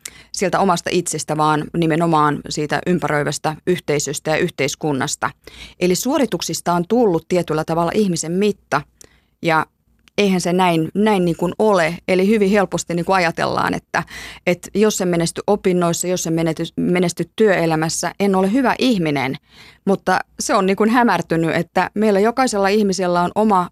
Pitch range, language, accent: 165-200 Hz, Finnish, native